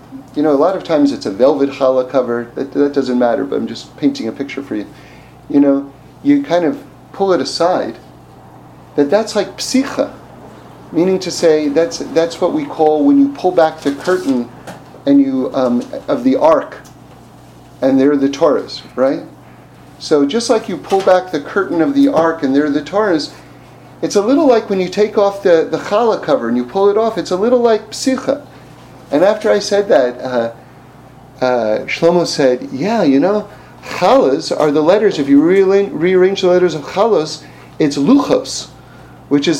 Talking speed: 190 wpm